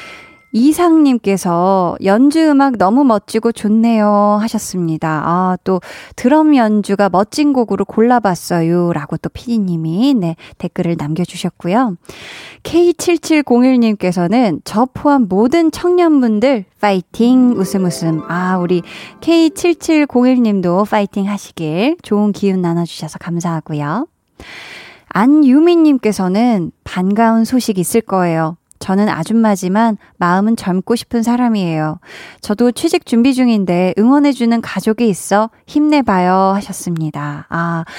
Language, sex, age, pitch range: Korean, female, 20-39, 180-245 Hz